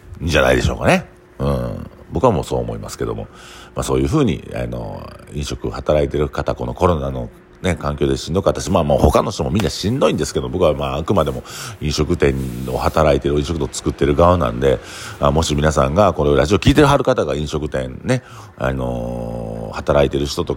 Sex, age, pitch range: male, 50-69, 65-90 Hz